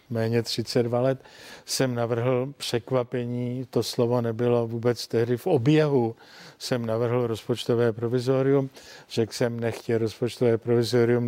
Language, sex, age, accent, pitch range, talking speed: Czech, male, 50-69, native, 115-135 Hz, 115 wpm